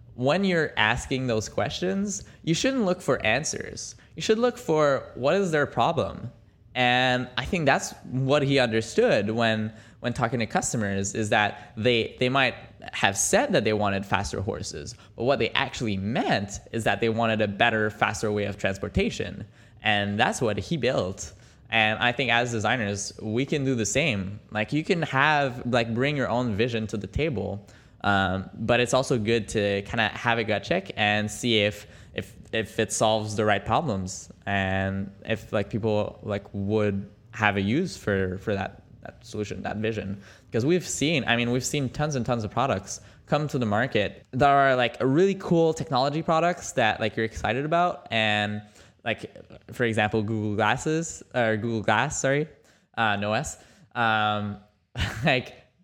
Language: English